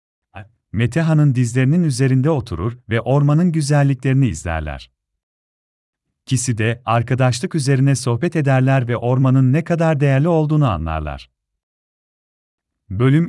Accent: native